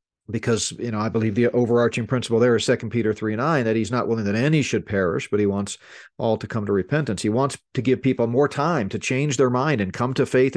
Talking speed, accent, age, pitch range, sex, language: 260 wpm, American, 40-59, 115-140 Hz, male, English